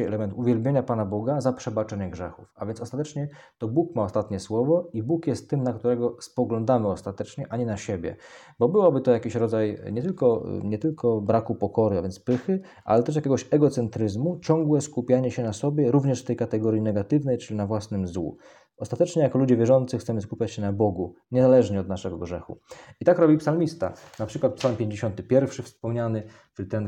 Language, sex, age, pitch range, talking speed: Polish, male, 20-39, 105-130 Hz, 180 wpm